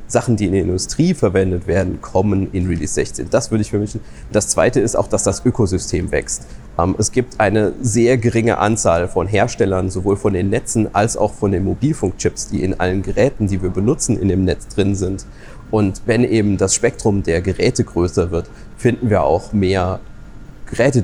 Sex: male